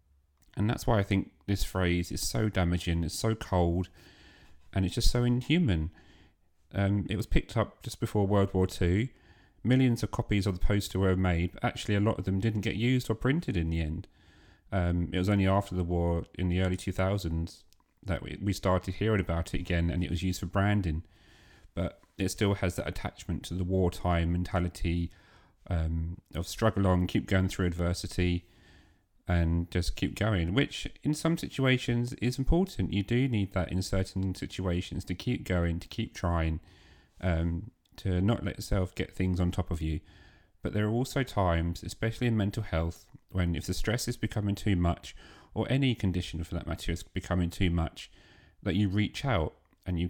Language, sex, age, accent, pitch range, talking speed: English, male, 40-59, British, 85-105 Hz, 190 wpm